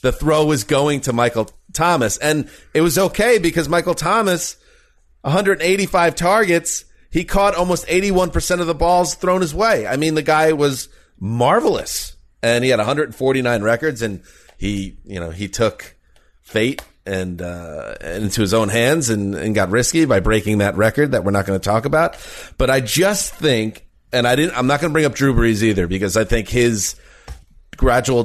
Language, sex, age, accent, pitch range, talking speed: English, male, 30-49, American, 105-150 Hz, 185 wpm